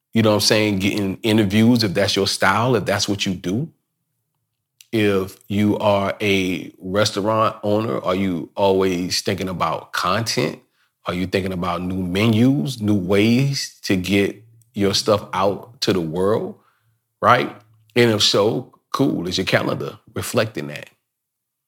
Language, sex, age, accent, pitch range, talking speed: English, male, 40-59, American, 100-130 Hz, 150 wpm